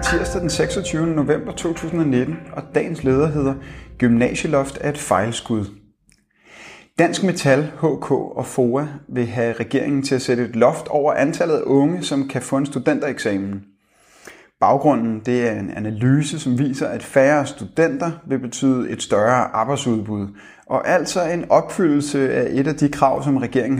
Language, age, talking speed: Danish, 30-49, 155 wpm